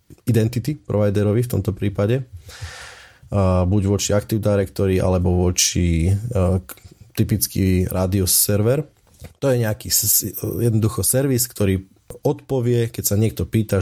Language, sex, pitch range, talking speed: Slovak, male, 100-115 Hz, 110 wpm